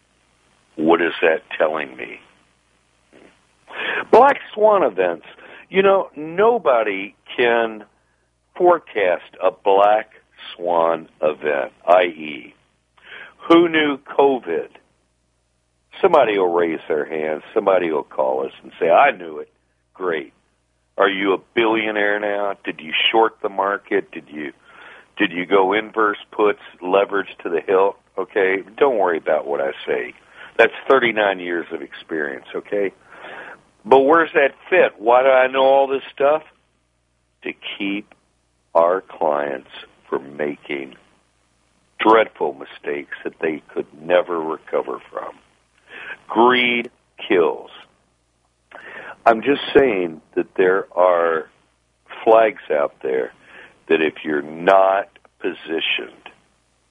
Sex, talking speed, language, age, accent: male, 115 wpm, English, 60-79, American